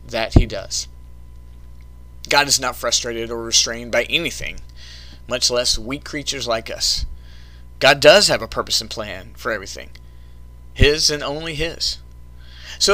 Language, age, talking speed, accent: English, 30-49, 145 wpm, American